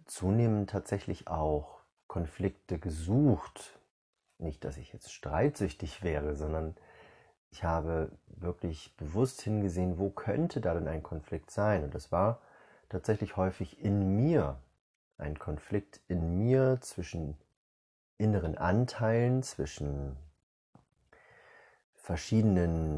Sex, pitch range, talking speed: male, 80-110 Hz, 105 wpm